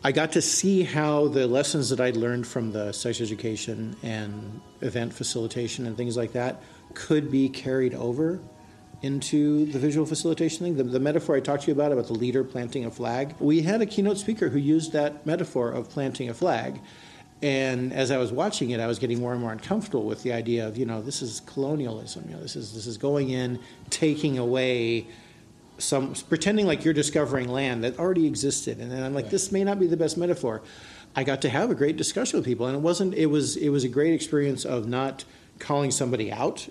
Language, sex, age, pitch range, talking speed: English, male, 40-59, 120-150 Hz, 215 wpm